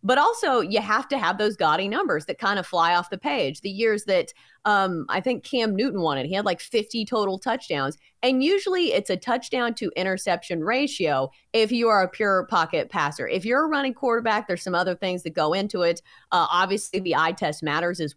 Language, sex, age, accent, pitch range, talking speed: English, female, 30-49, American, 175-250 Hz, 220 wpm